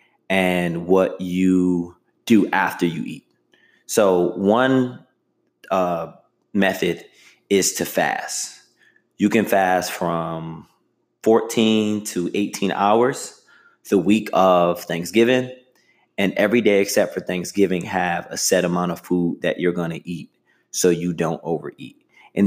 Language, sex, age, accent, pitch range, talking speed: English, male, 20-39, American, 85-100 Hz, 130 wpm